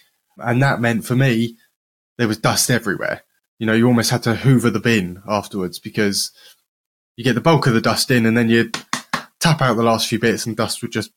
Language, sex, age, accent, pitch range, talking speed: English, male, 20-39, British, 110-135 Hz, 220 wpm